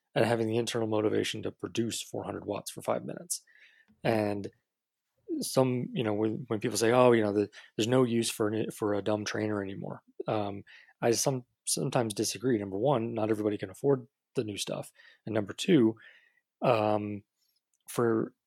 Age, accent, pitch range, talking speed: 30-49, American, 105-120 Hz, 170 wpm